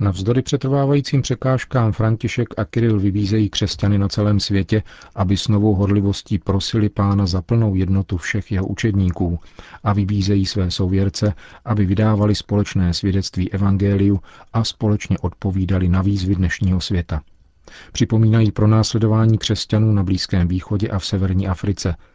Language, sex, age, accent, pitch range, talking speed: Czech, male, 40-59, native, 95-110 Hz, 135 wpm